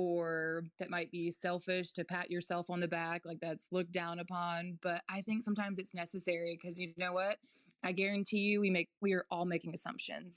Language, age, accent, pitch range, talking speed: English, 20-39, American, 170-220 Hz, 210 wpm